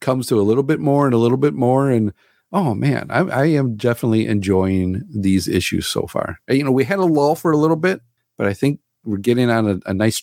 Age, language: 50-69, English